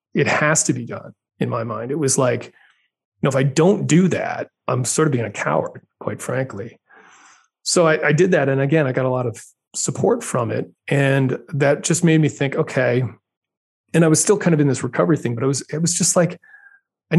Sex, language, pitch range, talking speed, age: male, English, 130-165 Hz, 230 wpm, 30-49